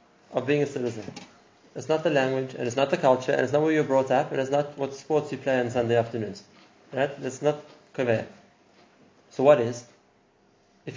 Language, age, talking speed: English, 30-49, 210 wpm